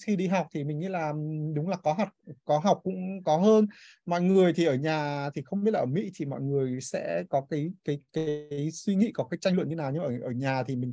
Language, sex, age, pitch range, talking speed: Vietnamese, male, 20-39, 145-185 Hz, 275 wpm